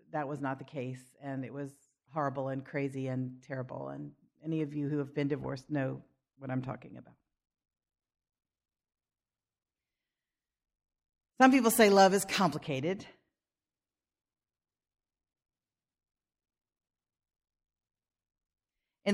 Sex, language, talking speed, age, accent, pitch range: female, English, 105 wpm, 50-69, American, 135-165 Hz